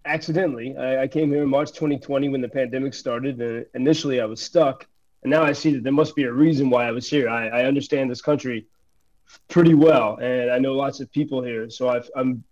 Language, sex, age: English, male, 20-39